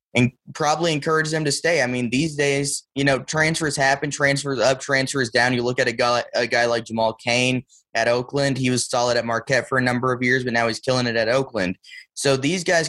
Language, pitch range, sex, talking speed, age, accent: English, 115-135 Hz, male, 235 wpm, 20-39, American